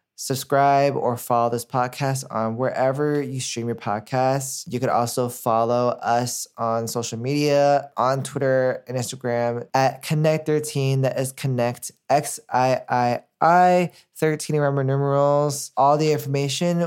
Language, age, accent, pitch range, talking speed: English, 20-39, American, 120-140 Hz, 125 wpm